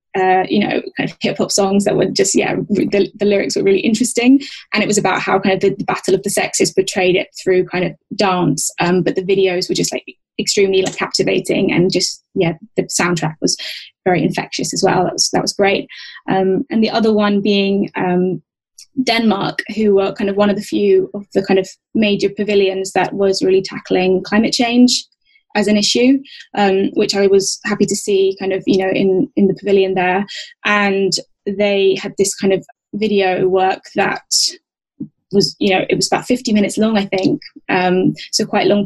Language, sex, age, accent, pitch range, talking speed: English, female, 10-29, British, 190-210 Hz, 205 wpm